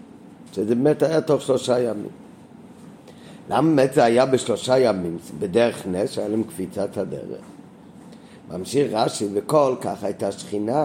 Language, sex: Hebrew, male